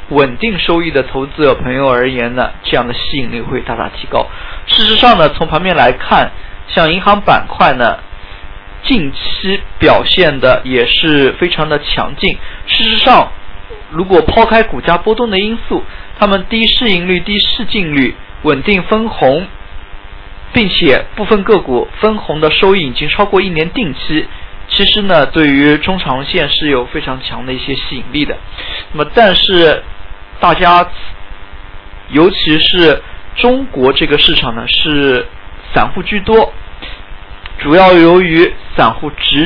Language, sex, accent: Chinese, male, native